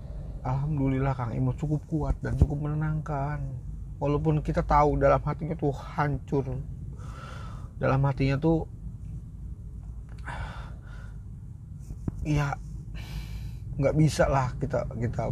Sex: male